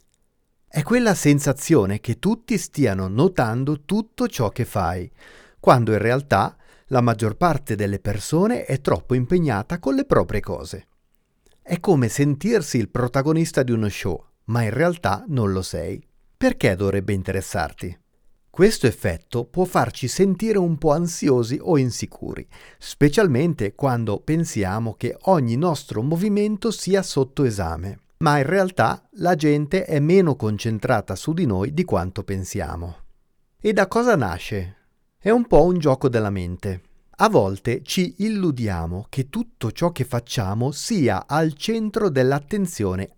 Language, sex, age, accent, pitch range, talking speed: Italian, male, 40-59, native, 105-165 Hz, 140 wpm